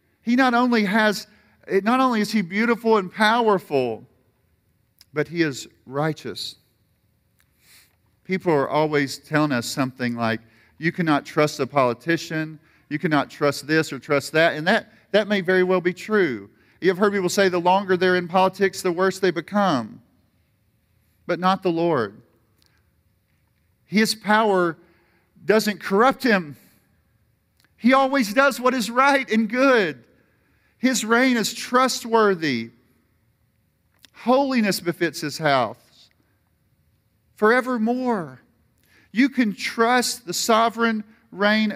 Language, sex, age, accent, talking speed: English, male, 40-59, American, 125 wpm